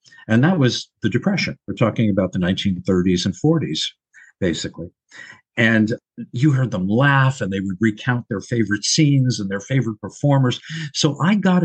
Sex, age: male, 50-69